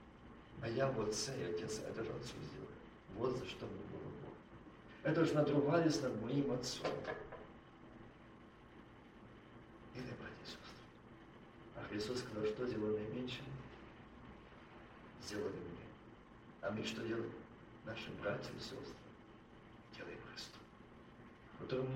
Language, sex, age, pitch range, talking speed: Russian, male, 50-69, 110-140 Hz, 120 wpm